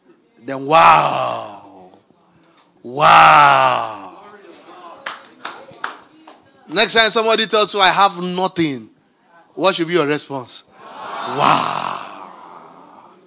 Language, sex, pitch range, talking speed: English, male, 155-230 Hz, 75 wpm